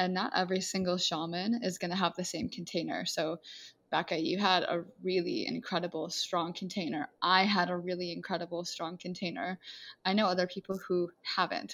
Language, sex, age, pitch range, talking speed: English, female, 20-39, 180-210 Hz, 175 wpm